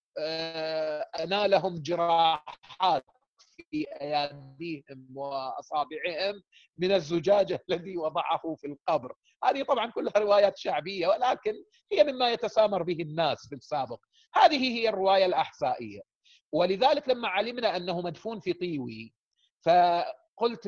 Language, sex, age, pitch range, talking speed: Arabic, male, 40-59, 150-195 Hz, 110 wpm